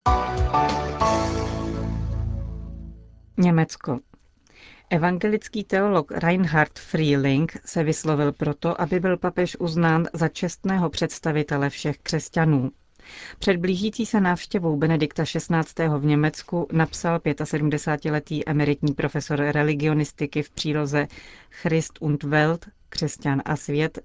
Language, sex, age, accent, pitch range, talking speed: Czech, female, 40-59, native, 145-170 Hz, 90 wpm